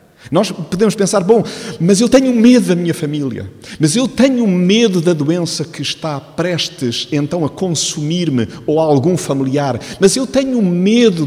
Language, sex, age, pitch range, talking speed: Portuguese, male, 50-69, 135-185 Hz, 165 wpm